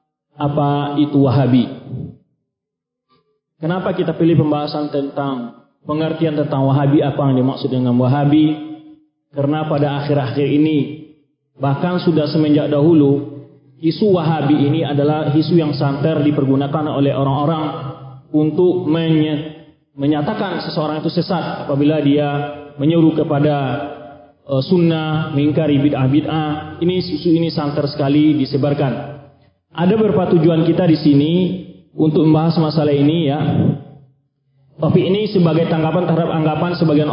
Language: English